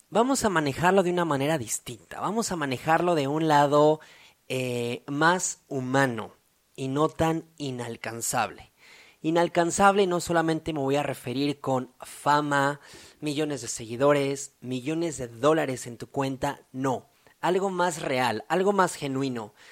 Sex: male